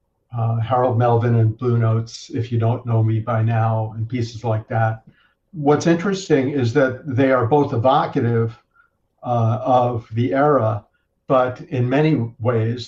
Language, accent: English, American